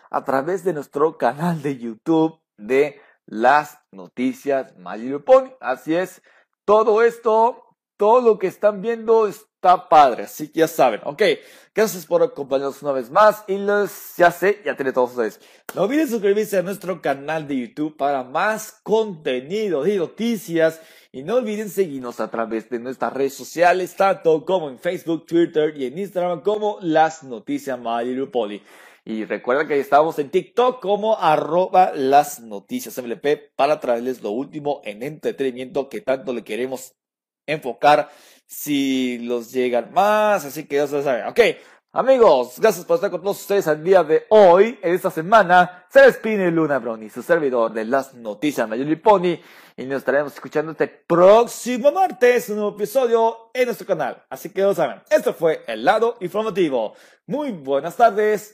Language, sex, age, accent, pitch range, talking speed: Spanish, male, 40-59, Mexican, 140-215 Hz, 165 wpm